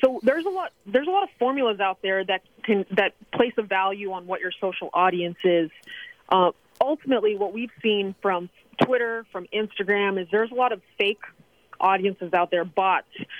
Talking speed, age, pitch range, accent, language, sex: 190 wpm, 30-49, 185-225 Hz, American, English, female